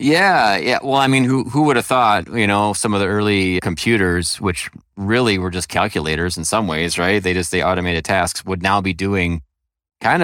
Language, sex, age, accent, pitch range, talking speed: English, male, 30-49, American, 90-115 Hz, 210 wpm